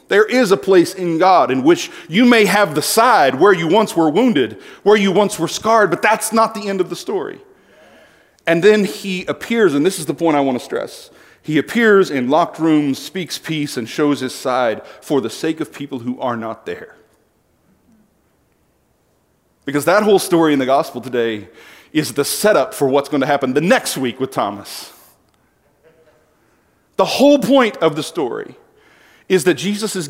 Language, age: English, 40-59